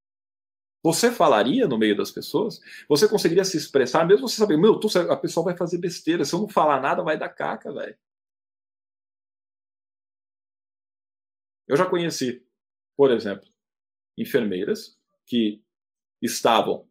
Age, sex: 40-59, male